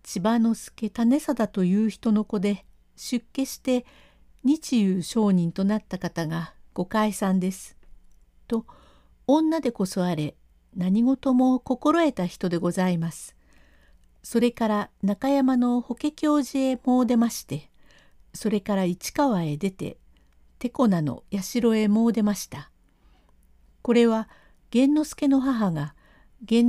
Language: Japanese